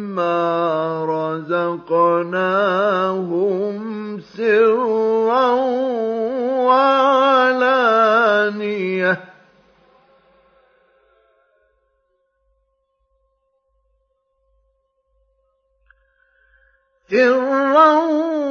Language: Arabic